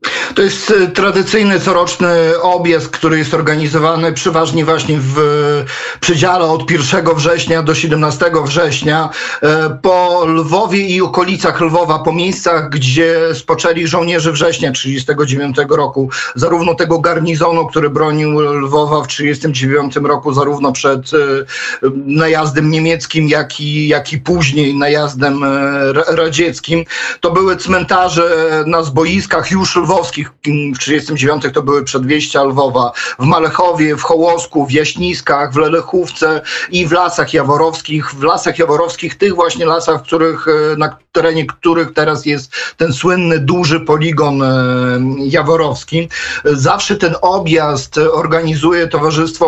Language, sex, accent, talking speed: Polish, male, native, 120 wpm